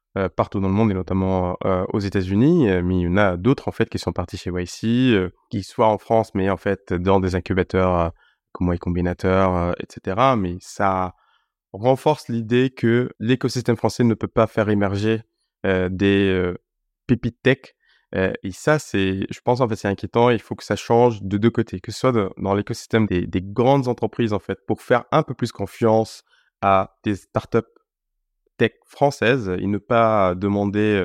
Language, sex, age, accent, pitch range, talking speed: French, male, 20-39, French, 95-115 Hz, 200 wpm